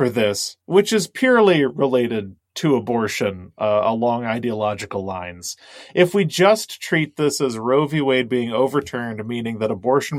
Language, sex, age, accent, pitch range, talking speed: English, male, 30-49, American, 120-160 Hz, 155 wpm